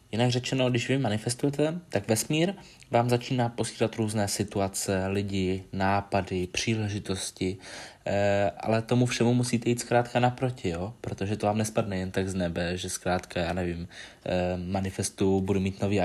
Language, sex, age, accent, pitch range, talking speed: Czech, male, 20-39, native, 95-115 Hz, 145 wpm